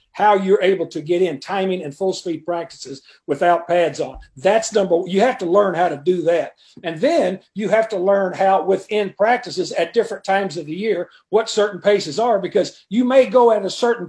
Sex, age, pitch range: male, 50-69, 180-220 Hz